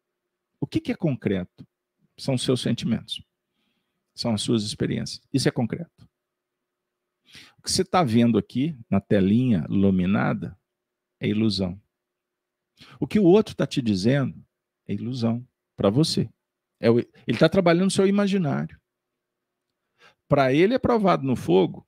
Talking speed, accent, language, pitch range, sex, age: 135 wpm, Brazilian, Portuguese, 115-175 Hz, male, 50-69